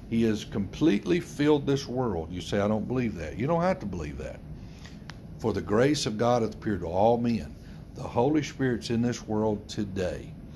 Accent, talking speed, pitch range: American, 200 wpm, 95-130 Hz